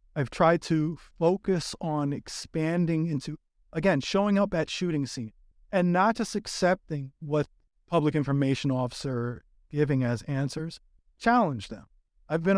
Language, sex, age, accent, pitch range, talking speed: English, male, 30-49, American, 140-170 Hz, 135 wpm